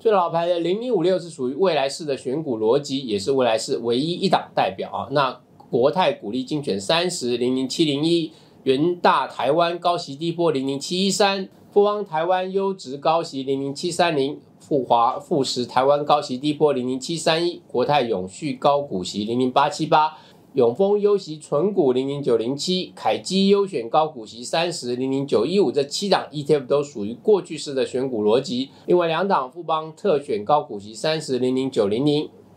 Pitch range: 135-185 Hz